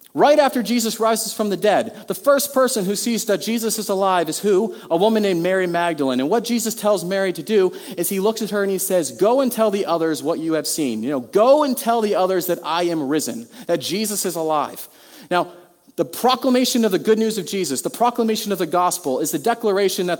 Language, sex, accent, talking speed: English, male, American, 240 wpm